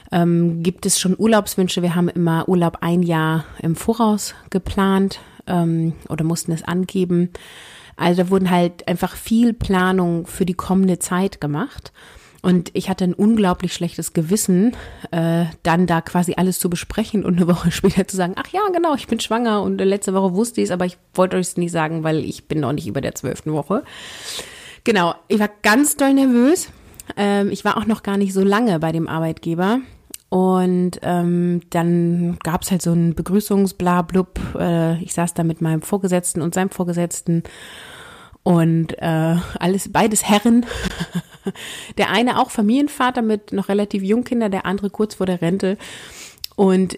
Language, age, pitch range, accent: German, 30-49, 170-200 Hz, German